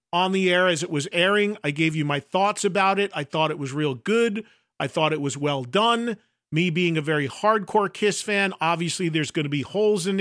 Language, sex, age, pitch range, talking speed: English, male, 40-59, 155-200 Hz, 235 wpm